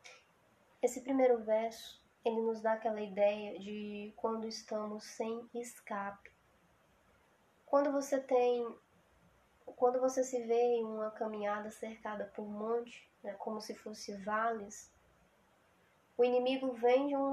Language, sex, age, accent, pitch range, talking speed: Portuguese, female, 10-29, Brazilian, 220-255 Hz, 130 wpm